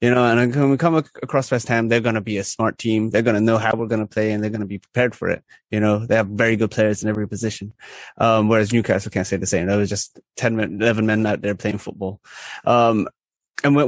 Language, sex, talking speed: English, male, 275 wpm